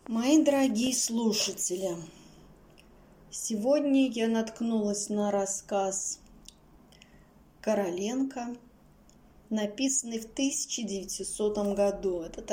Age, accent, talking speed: 20-39, native, 65 wpm